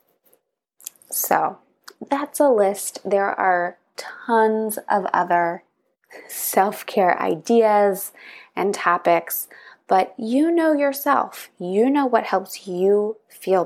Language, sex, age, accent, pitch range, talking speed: English, female, 20-39, American, 180-250 Hz, 100 wpm